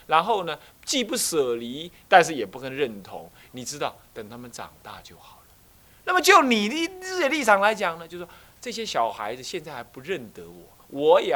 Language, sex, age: Chinese, male, 30-49